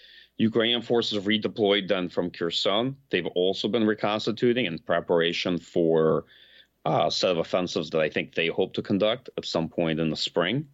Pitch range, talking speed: 85-110 Hz, 170 wpm